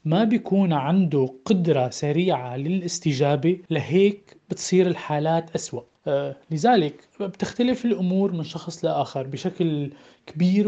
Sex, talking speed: male, 105 wpm